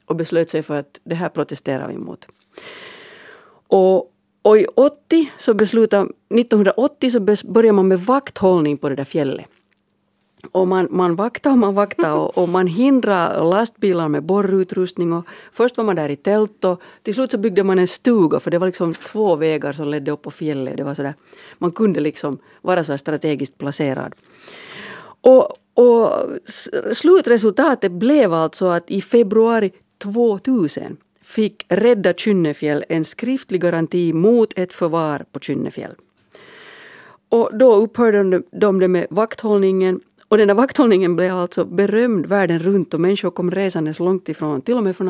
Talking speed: 160 wpm